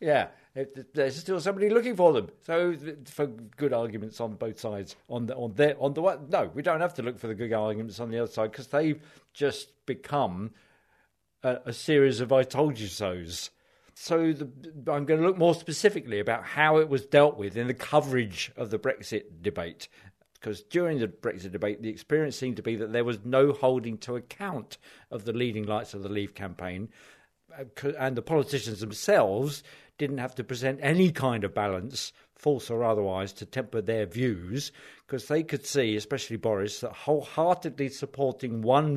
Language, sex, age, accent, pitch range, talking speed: English, male, 50-69, British, 110-145 Hz, 190 wpm